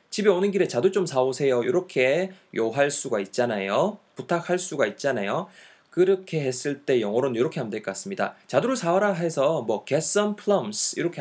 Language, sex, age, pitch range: Korean, male, 20-39, 125-190 Hz